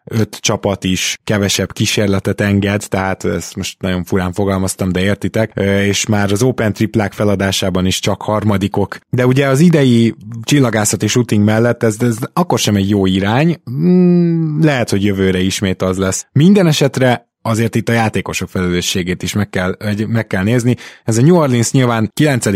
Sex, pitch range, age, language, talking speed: male, 95-115 Hz, 20-39, Hungarian, 170 wpm